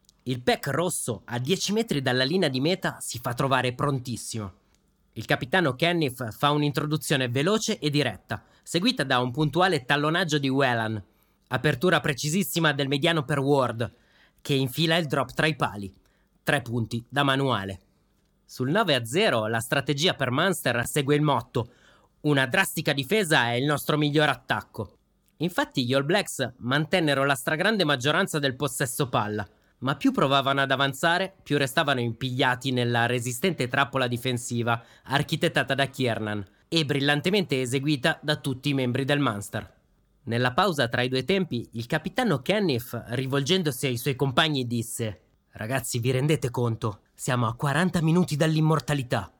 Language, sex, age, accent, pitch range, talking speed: Italian, male, 30-49, native, 125-155 Hz, 145 wpm